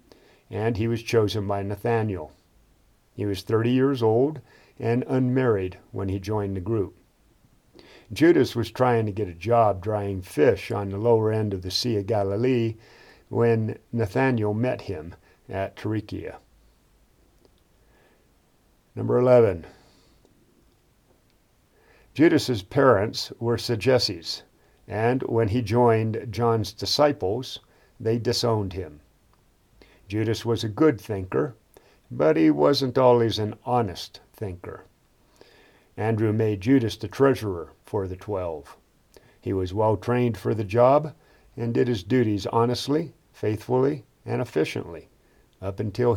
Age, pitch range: 50-69, 100-125 Hz